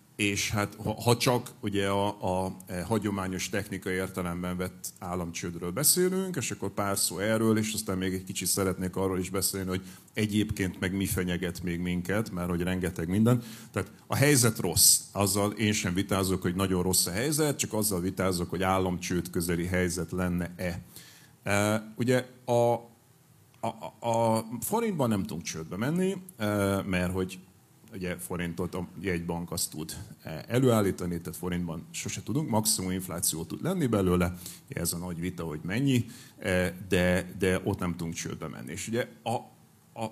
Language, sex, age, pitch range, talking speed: Hungarian, male, 50-69, 90-115 Hz, 160 wpm